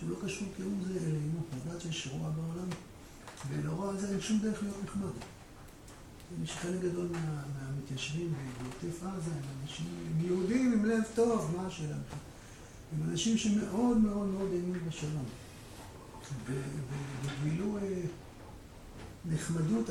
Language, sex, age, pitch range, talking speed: Hebrew, male, 60-79, 140-195 Hz, 120 wpm